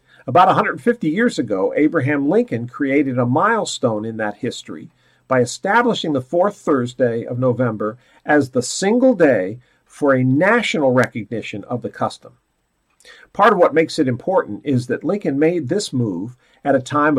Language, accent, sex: English, American, male